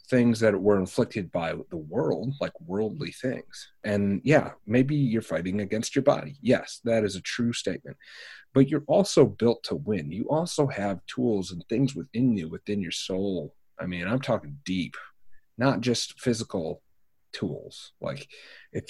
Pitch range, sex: 100-135 Hz, male